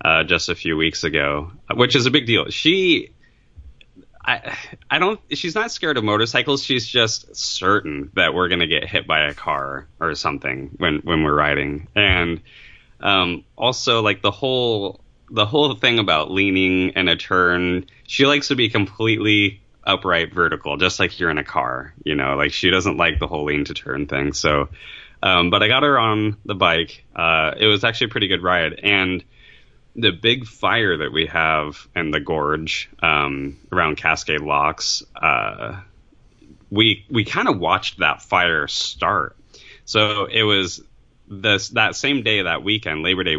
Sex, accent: male, American